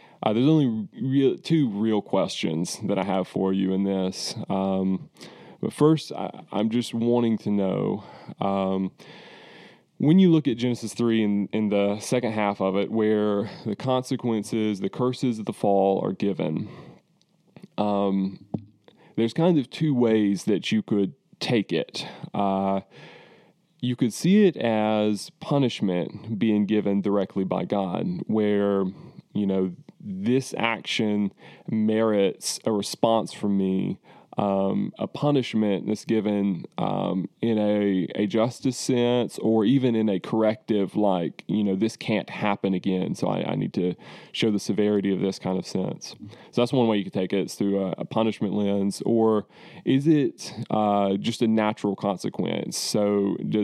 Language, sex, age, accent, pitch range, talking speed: English, male, 20-39, American, 100-120 Hz, 155 wpm